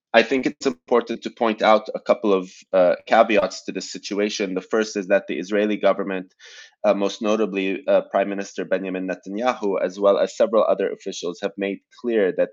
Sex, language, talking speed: male, English, 190 wpm